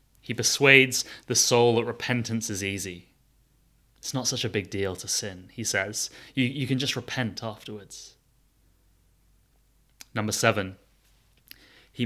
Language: English